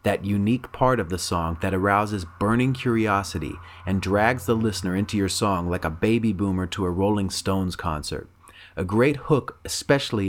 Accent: American